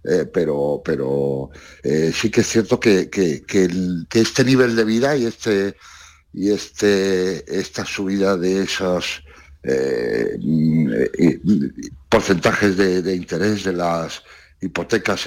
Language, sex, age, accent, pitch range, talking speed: Spanish, male, 60-79, Spanish, 85-120 Hz, 130 wpm